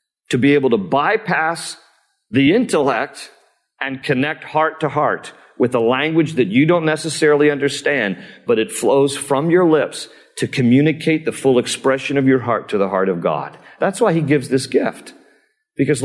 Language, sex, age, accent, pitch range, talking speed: English, male, 50-69, American, 130-170 Hz, 170 wpm